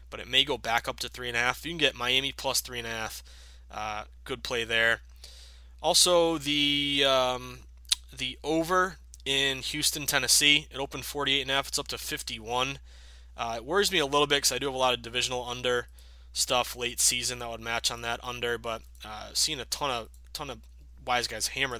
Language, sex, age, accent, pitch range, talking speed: English, male, 20-39, American, 85-130 Hz, 215 wpm